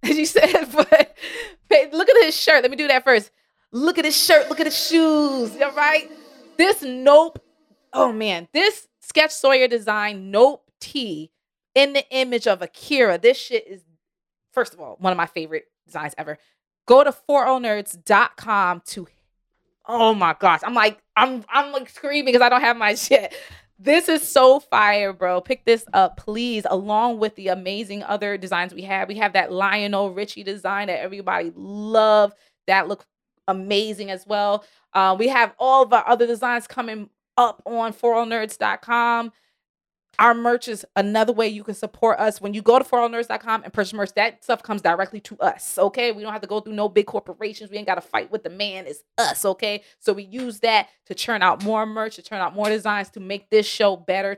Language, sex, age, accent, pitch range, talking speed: English, female, 20-39, American, 200-255 Hz, 195 wpm